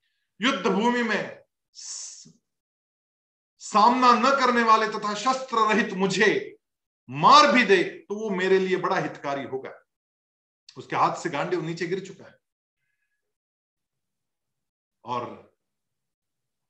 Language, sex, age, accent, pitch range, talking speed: Hindi, male, 50-69, native, 135-200 Hz, 110 wpm